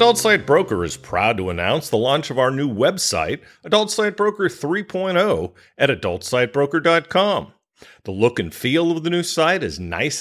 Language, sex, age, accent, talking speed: English, male, 40-59, American, 170 wpm